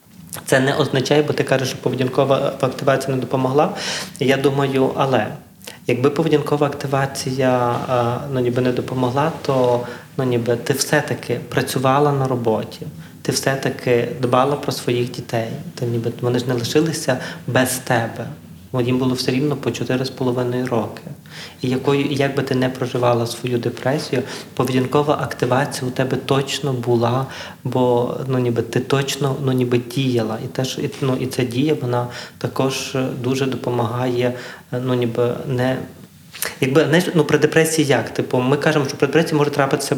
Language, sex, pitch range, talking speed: Ukrainian, male, 125-145 Hz, 150 wpm